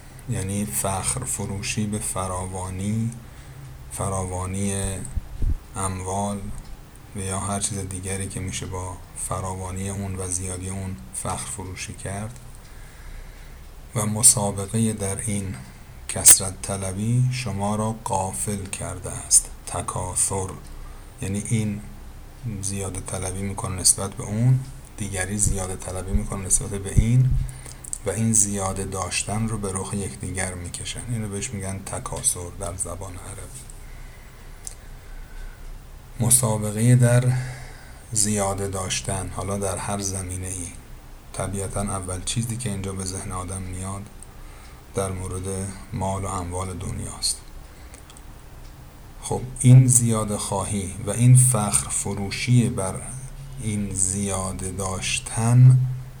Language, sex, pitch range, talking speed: Persian, male, 95-115 Hz, 110 wpm